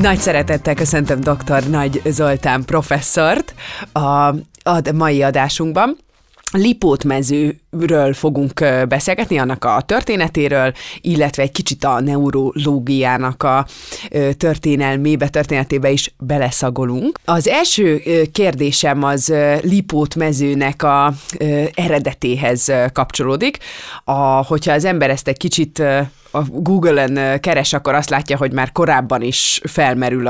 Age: 20-39